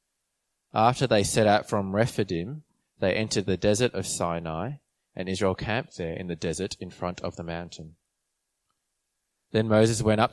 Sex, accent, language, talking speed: male, Australian, English, 165 wpm